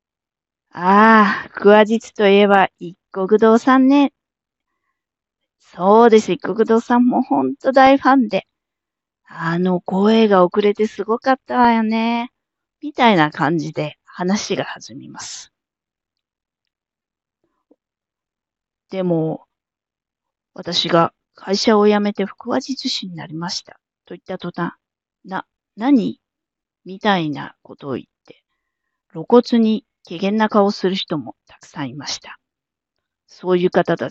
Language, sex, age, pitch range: Japanese, female, 40-59, 175-230 Hz